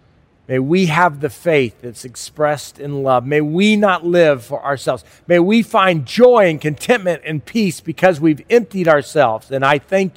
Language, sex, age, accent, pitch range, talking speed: English, male, 40-59, American, 135-185 Hz, 175 wpm